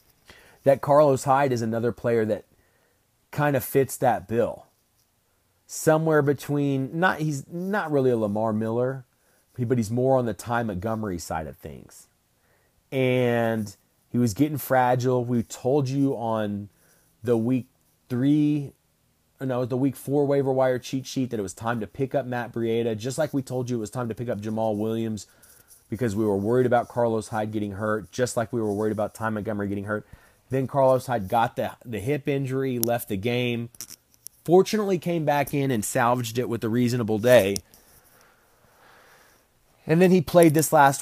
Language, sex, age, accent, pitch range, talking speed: English, male, 30-49, American, 110-135 Hz, 175 wpm